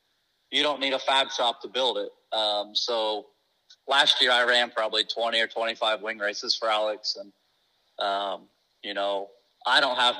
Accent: American